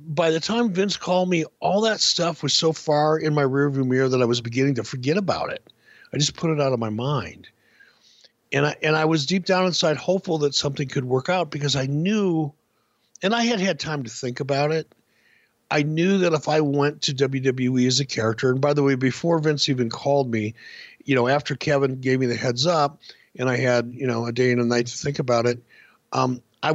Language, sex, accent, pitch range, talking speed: English, male, American, 120-155 Hz, 230 wpm